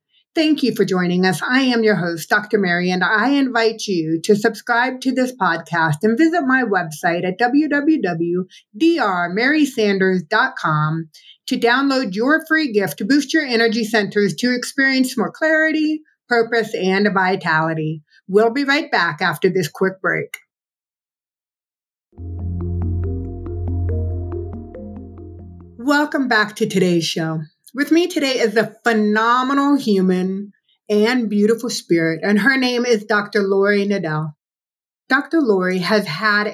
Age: 50-69